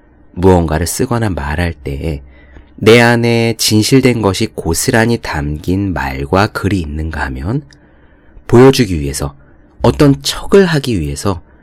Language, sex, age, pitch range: Korean, male, 30-49, 80-115 Hz